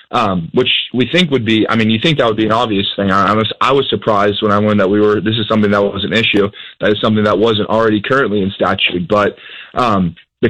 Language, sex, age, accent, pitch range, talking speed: English, male, 20-39, American, 100-110 Hz, 270 wpm